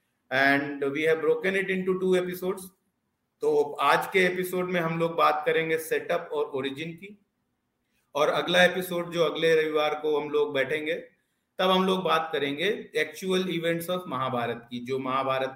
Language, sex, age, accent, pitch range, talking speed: Hindi, male, 40-59, native, 145-190 Hz, 170 wpm